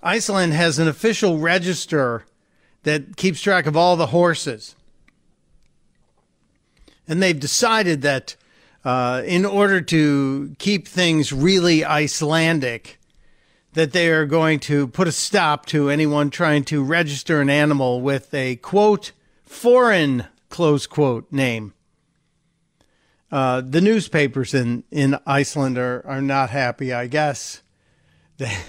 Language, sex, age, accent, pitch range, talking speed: English, male, 50-69, American, 140-175 Hz, 120 wpm